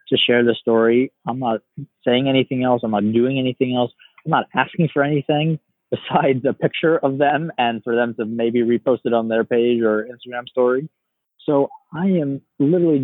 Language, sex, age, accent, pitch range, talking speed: English, male, 20-39, American, 110-145 Hz, 190 wpm